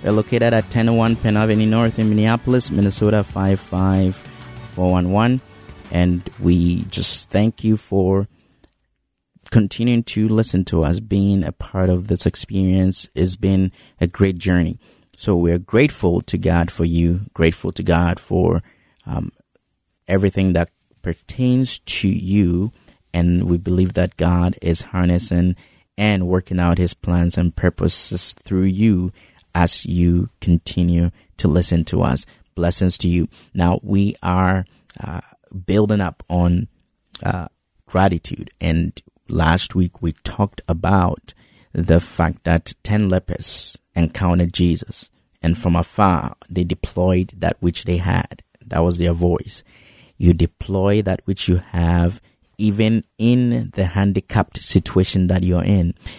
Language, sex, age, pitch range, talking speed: English, male, 30-49, 85-100 Hz, 135 wpm